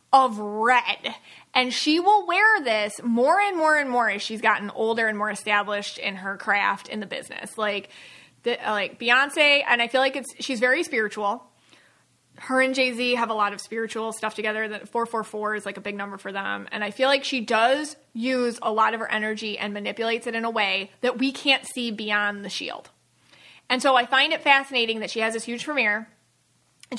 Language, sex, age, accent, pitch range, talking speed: English, female, 30-49, American, 215-260 Hz, 210 wpm